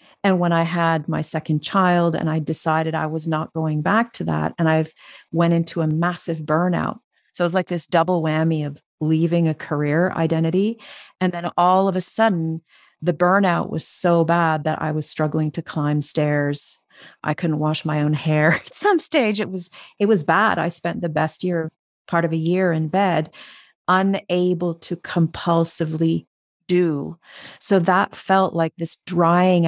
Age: 40-59